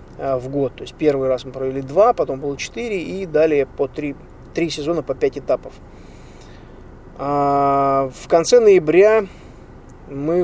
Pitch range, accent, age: 135-165 Hz, native, 20-39